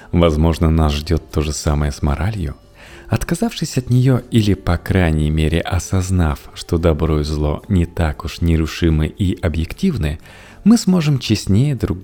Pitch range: 80-125 Hz